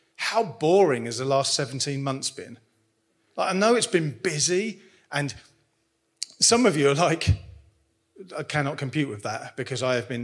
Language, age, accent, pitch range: English, 40-59, British, 115-185 Hz